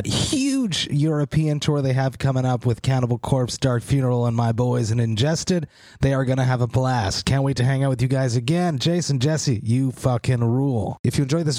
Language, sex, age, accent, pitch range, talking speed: English, male, 30-49, American, 120-150 Hz, 215 wpm